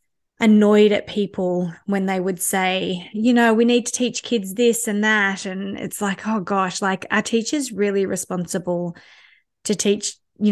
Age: 20-39